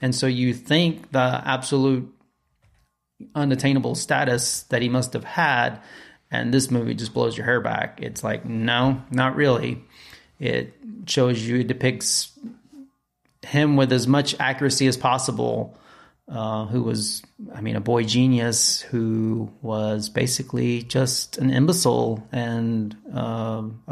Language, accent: English, American